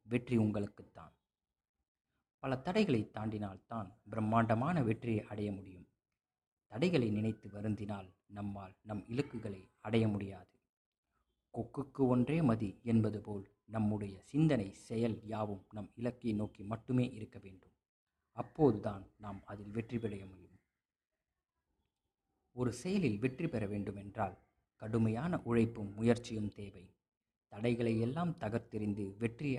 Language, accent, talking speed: Tamil, native, 105 wpm